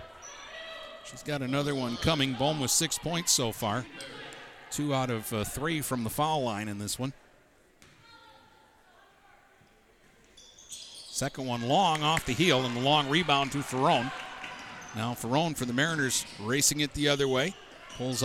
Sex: male